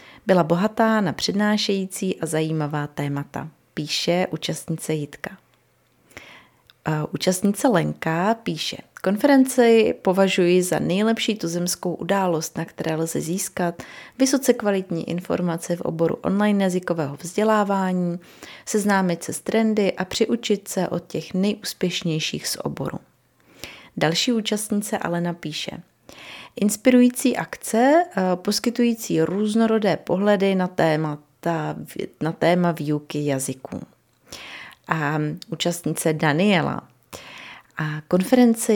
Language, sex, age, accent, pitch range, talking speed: Czech, female, 30-49, native, 160-210 Hz, 95 wpm